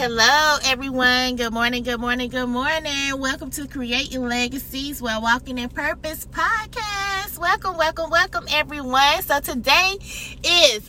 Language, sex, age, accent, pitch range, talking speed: English, female, 20-39, American, 235-325 Hz, 130 wpm